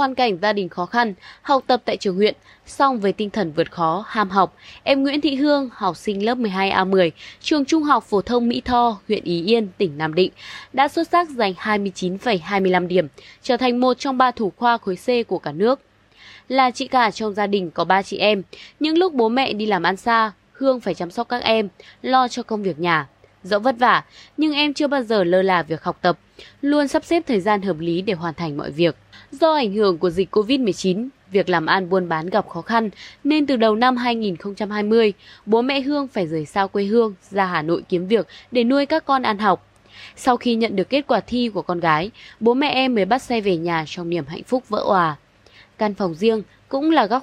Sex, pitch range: female, 185-250 Hz